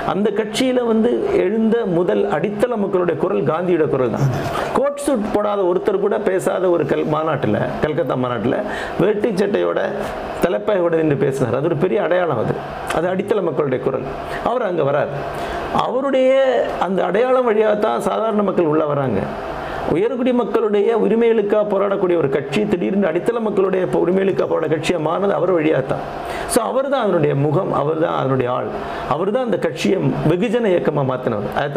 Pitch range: 170-245 Hz